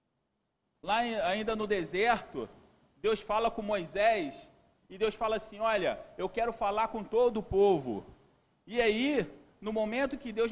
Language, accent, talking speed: Portuguese, Brazilian, 150 wpm